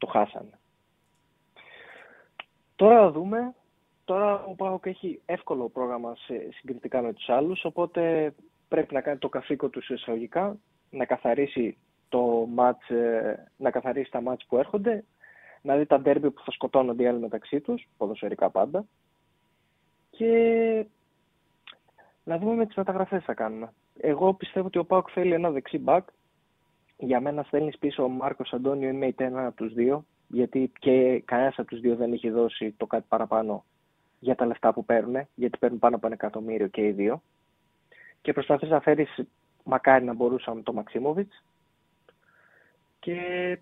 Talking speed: 150 wpm